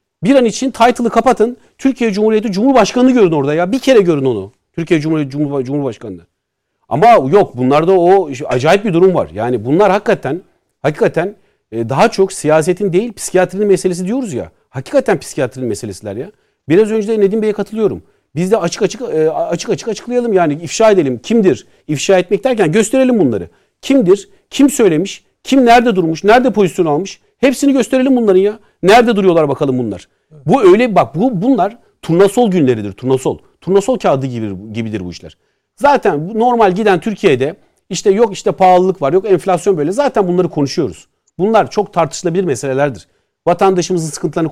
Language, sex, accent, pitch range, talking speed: Turkish, male, native, 160-230 Hz, 160 wpm